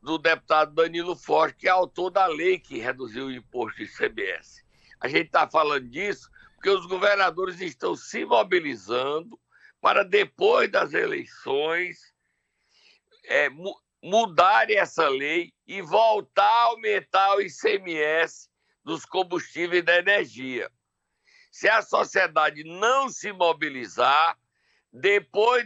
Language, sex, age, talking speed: Portuguese, male, 60-79, 115 wpm